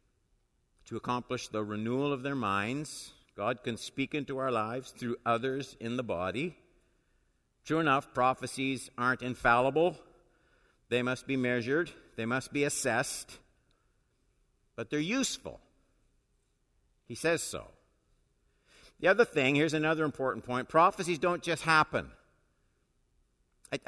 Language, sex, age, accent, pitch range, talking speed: English, male, 50-69, American, 115-150 Hz, 125 wpm